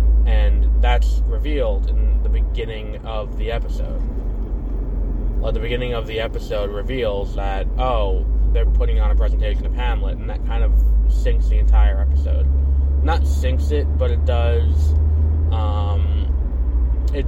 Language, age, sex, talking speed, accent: English, 20-39, male, 140 wpm, American